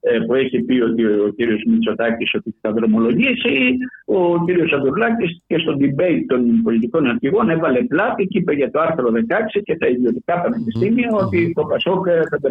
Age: 60-79